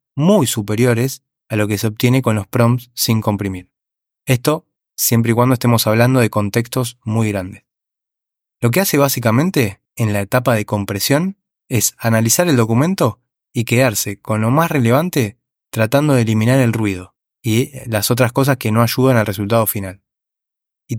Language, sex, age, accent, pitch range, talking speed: Spanish, male, 20-39, Argentinian, 110-135 Hz, 165 wpm